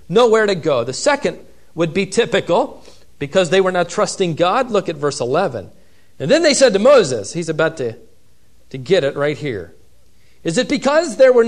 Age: 40-59